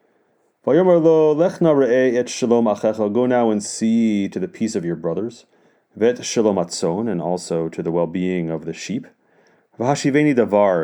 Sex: male